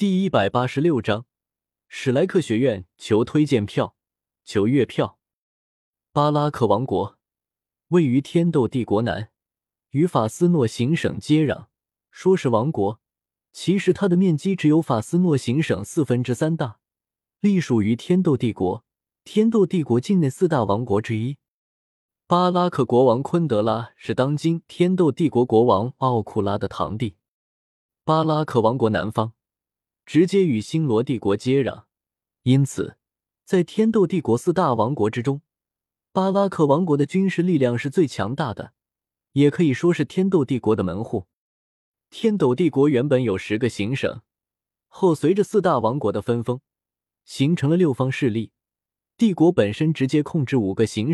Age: 20-39